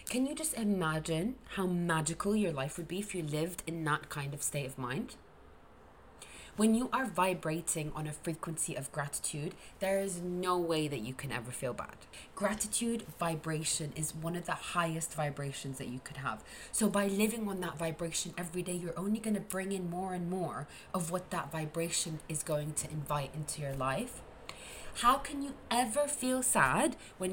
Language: English